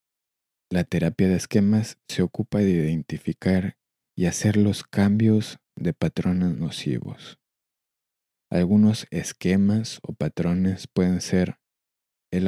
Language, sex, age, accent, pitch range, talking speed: Spanish, male, 20-39, Mexican, 85-105 Hz, 105 wpm